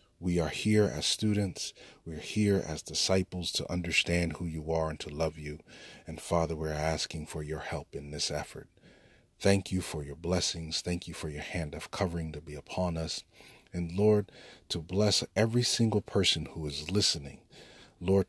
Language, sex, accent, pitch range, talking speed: English, male, American, 80-105 Hz, 180 wpm